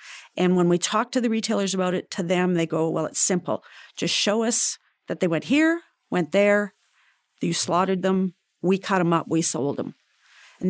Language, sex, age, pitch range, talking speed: English, female, 50-69, 175-220 Hz, 200 wpm